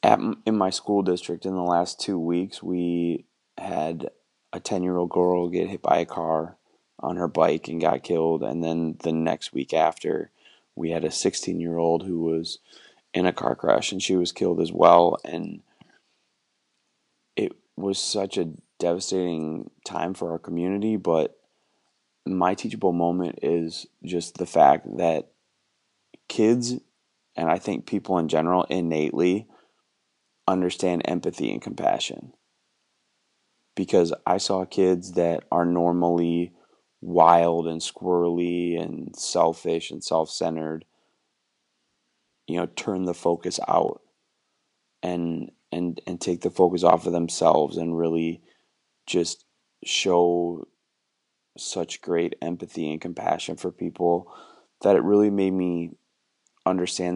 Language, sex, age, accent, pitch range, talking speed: English, male, 20-39, American, 85-90 Hz, 130 wpm